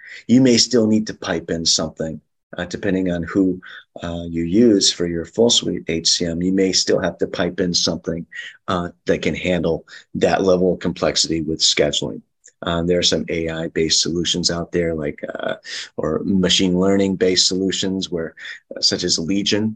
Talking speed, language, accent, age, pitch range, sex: 175 wpm, English, American, 30-49, 85-95 Hz, male